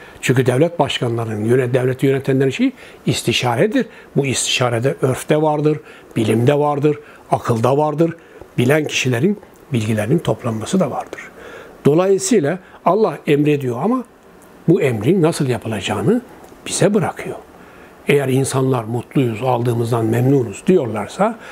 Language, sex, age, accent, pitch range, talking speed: Turkish, male, 60-79, native, 125-180 Hz, 105 wpm